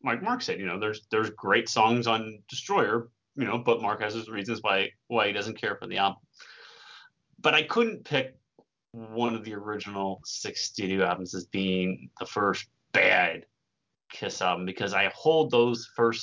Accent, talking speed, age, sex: American, 180 wpm, 30-49, male